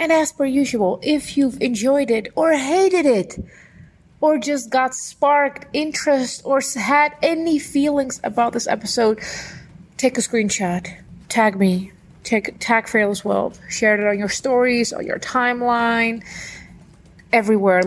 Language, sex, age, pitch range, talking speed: English, female, 30-49, 190-255 Hz, 135 wpm